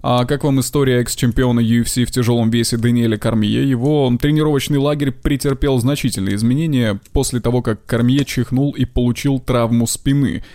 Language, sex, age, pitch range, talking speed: Russian, male, 20-39, 115-140 Hz, 150 wpm